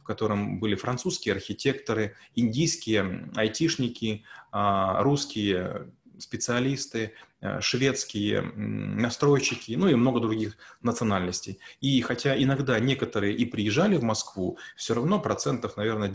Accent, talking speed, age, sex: native, 105 wpm, 20-39, male